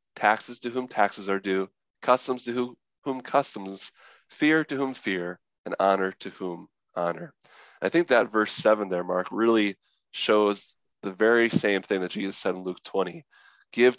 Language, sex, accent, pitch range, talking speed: English, male, American, 95-120 Hz, 165 wpm